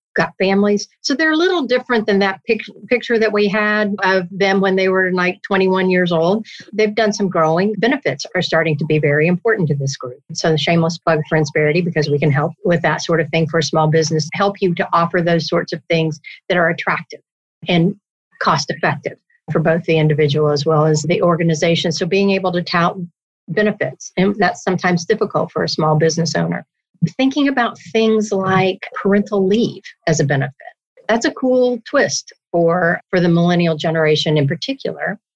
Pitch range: 160-205 Hz